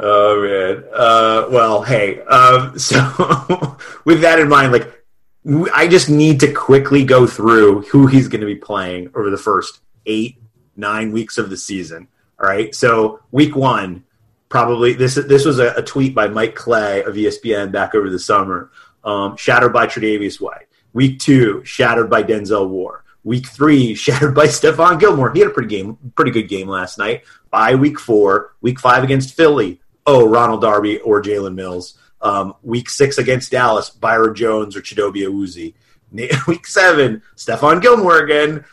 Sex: male